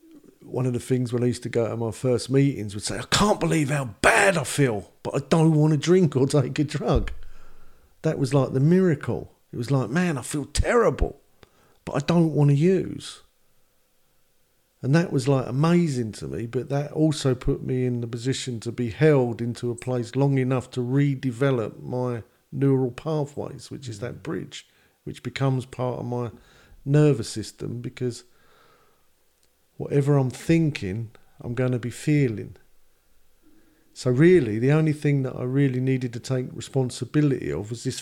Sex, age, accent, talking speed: male, 40-59, British, 180 wpm